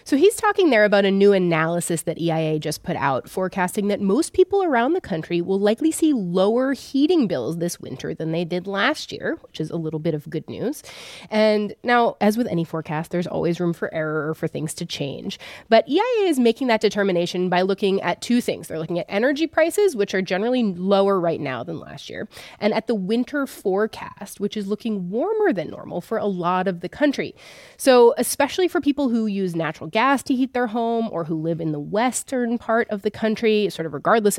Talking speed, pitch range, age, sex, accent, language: 215 wpm, 180-260 Hz, 30-49, female, American, English